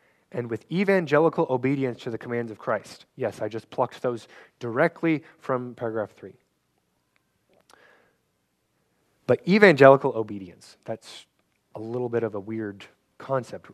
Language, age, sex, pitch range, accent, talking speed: English, 20-39, male, 105-130 Hz, American, 125 wpm